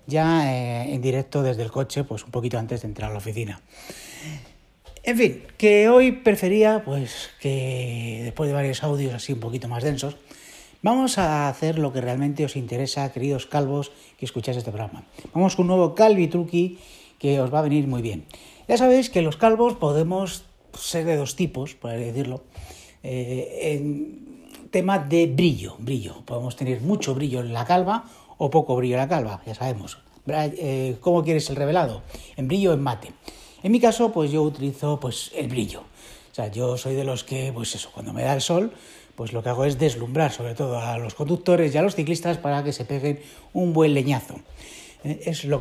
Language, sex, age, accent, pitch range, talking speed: Spanish, male, 60-79, Spanish, 125-170 Hz, 195 wpm